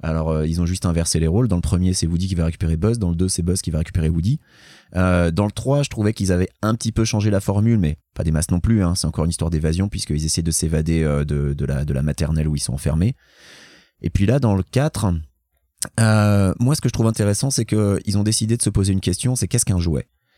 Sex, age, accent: male, 30-49, French